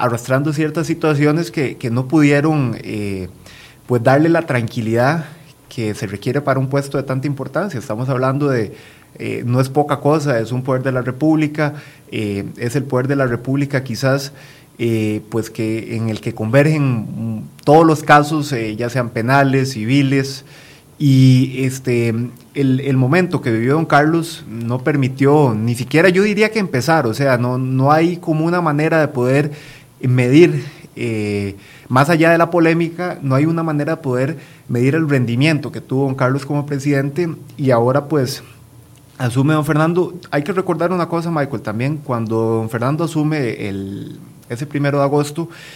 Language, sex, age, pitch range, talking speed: Spanish, male, 30-49, 125-155 Hz, 170 wpm